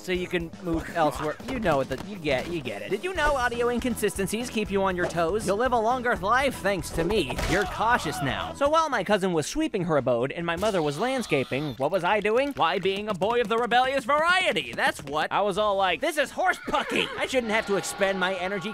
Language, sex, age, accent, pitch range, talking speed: English, male, 20-39, American, 180-255 Hz, 245 wpm